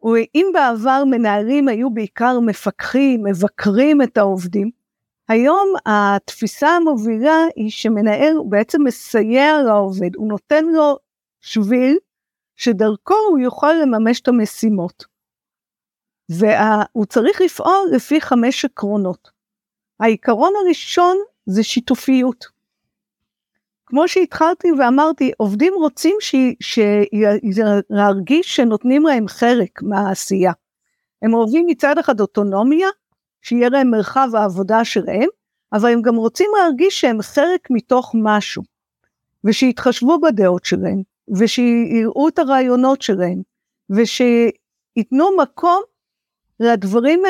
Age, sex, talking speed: 50-69, female, 100 wpm